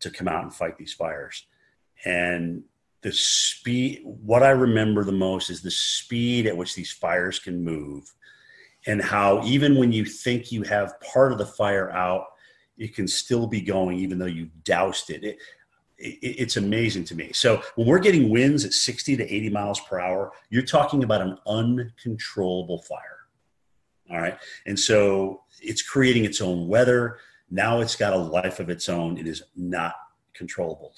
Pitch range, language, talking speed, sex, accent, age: 90-115 Hz, English, 180 wpm, male, American, 40-59